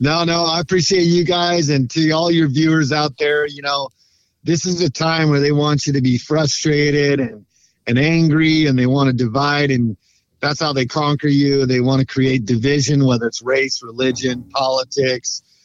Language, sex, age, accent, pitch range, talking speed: English, male, 50-69, American, 125-145 Hz, 190 wpm